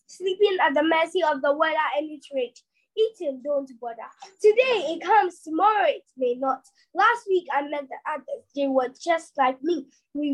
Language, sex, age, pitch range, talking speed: English, female, 20-39, 265-375 Hz, 180 wpm